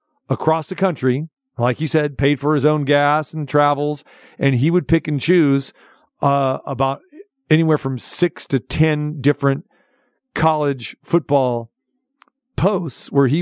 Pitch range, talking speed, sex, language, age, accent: 135-165 Hz, 145 wpm, male, English, 40-59, American